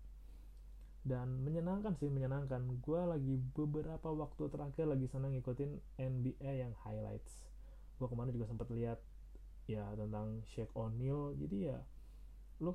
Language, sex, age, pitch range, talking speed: Indonesian, male, 20-39, 110-145 Hz, 125 wpm